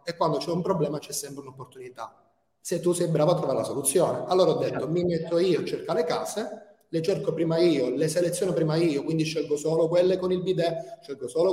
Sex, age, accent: male, 30-49, native